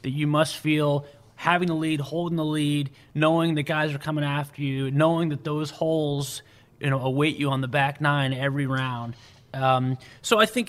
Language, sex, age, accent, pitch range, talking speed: English, male, 30-49, American, 125-150 Hz, 195 wpm